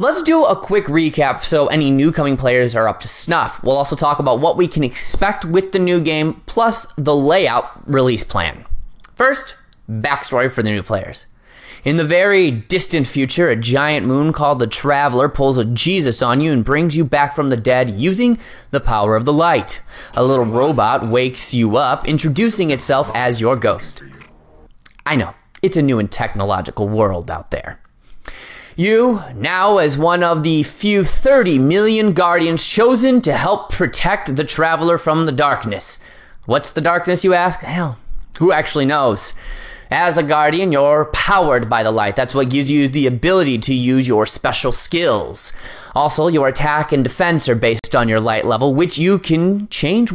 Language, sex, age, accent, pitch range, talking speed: English, male, 20-39, American, 130-180 Hz, 175 wpm